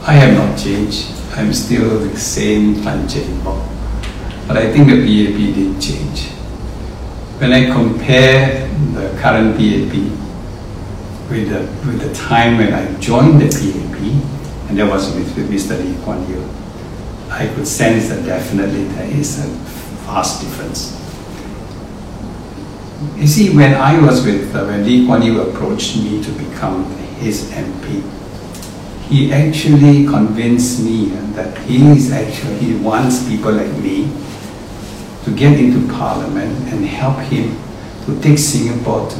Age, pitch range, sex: 60-79, 95-130 Hz, male